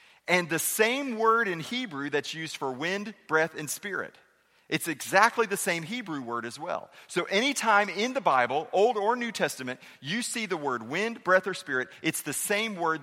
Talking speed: 195 wpm